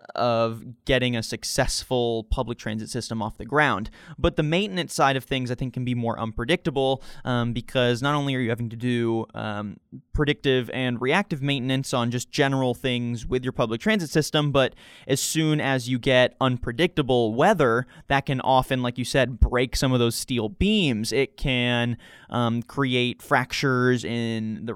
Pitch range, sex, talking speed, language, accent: 120-145 Hz, male, 175 wpm, English, American